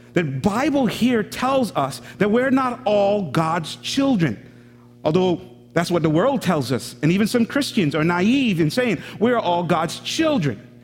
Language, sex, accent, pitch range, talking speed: English, male, American, 145-230 Hz, 165 wpm